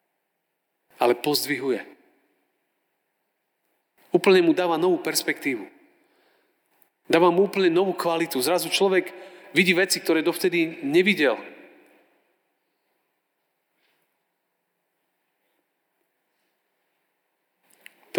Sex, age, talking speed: male, 40-59, 65 wpm